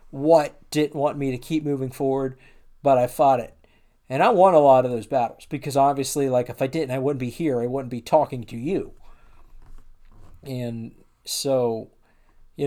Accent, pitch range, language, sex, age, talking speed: American, 110-140 Hz, English, male, 50-69, 185 wpm